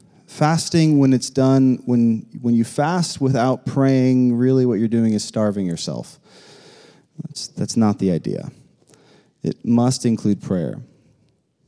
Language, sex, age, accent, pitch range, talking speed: English, male, 30-49, American, 115-145 Hz, 135 wpm